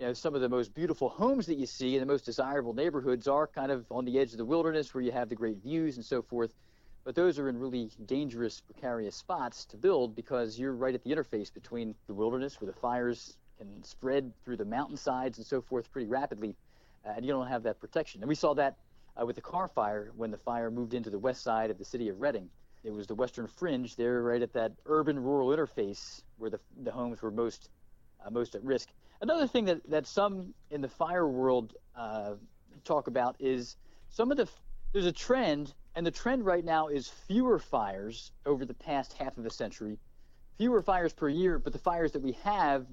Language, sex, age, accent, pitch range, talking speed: English, male, 40-59, American, 115-155 Hz, 225 wpm